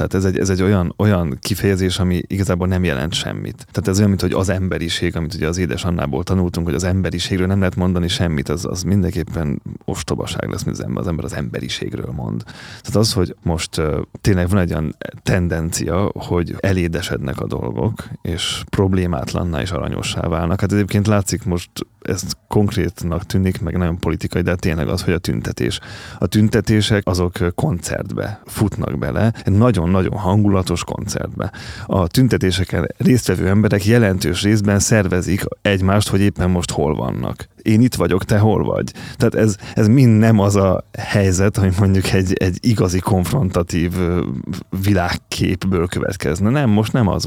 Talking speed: 165 wpm